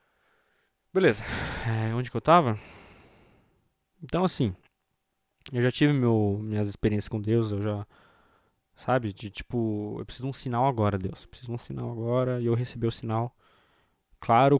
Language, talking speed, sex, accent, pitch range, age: Portuguese, 150 wpm, male, Brazilian, 105-125 Hz, 20-39